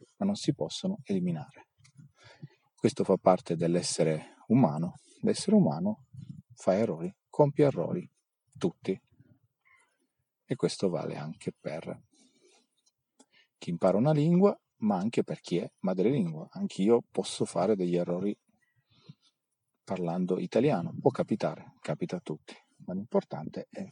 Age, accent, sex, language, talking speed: 40-59, native, male, Italian, 120 wpm